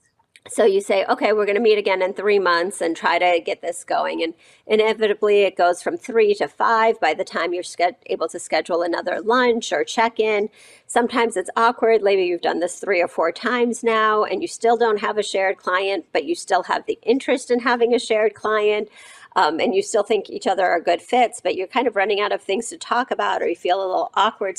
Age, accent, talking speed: 40-59, American, 235 wpm